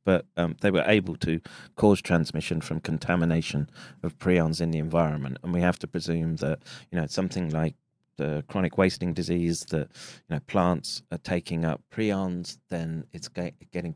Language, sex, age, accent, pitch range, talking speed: English, male, 30-49, British, 85-100 Hz, 180 wpm